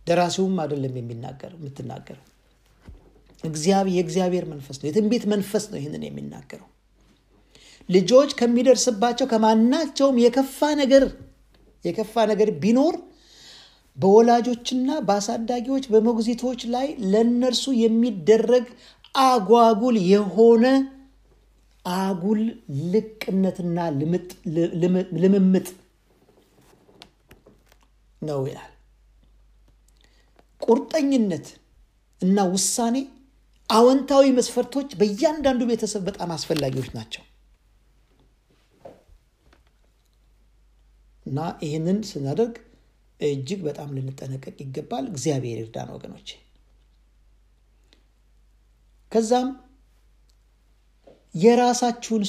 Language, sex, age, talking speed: Amharic, male, 50-69, 65 wpm